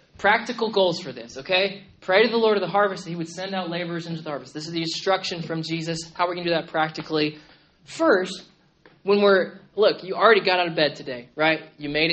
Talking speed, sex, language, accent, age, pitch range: 235 wpm, male, English, American, 20-39, 170-270 Hz